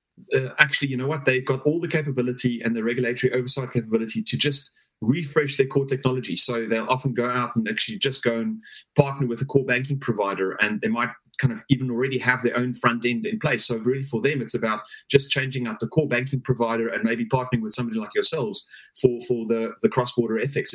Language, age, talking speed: English, 30-49, 225 wpm